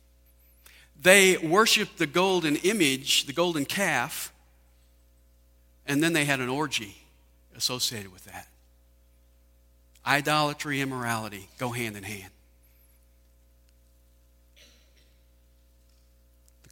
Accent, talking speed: American, 85 wpm